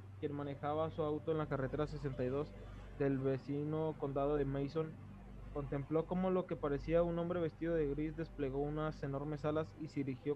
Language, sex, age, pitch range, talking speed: Spanish, male, 20-39, 130-165 Hz, 175 wpm